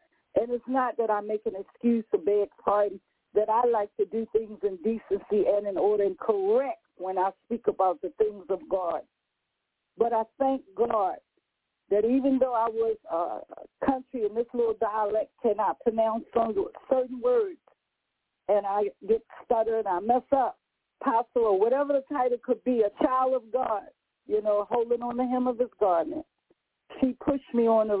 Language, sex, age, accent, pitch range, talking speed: English, female, 50-69, American, 205-260 Hz, 180 wpm